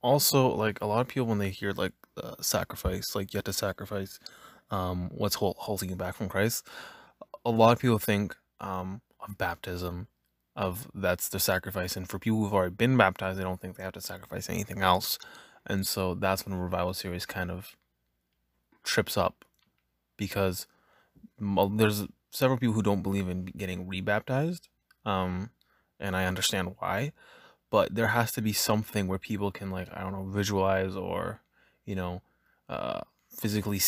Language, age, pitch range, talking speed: English, 20-39, 90-105 Hz, 170 wpm